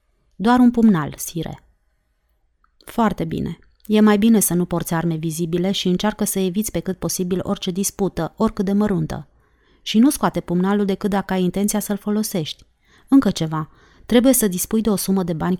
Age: 30-49